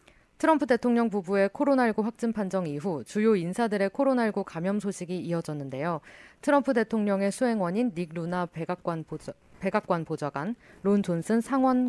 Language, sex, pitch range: Korean, female, 170-230 Hz